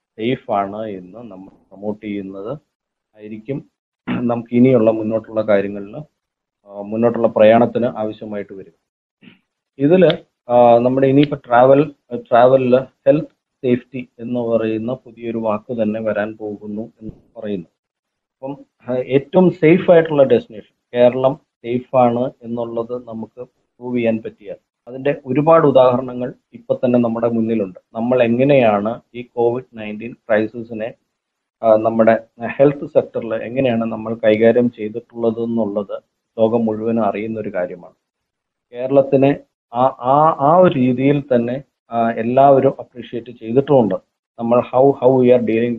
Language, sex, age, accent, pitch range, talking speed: Malayalam, male, 30-49, native, 110-130 Hz, 105 wpm